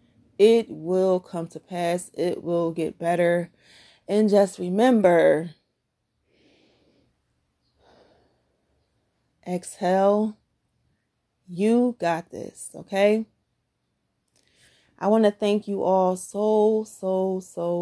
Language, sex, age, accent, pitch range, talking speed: English, female, 20-39, American, 170-210 Hz, 90 wpm